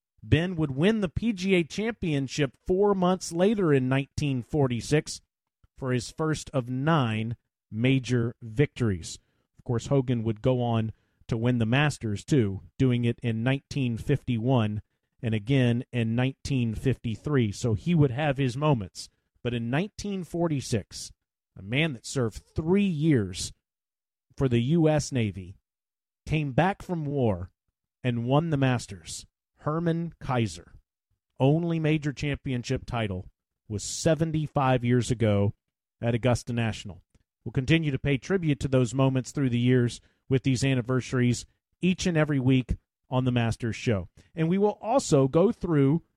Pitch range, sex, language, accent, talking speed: 115-155 Hz, male, English, American, 135 wpm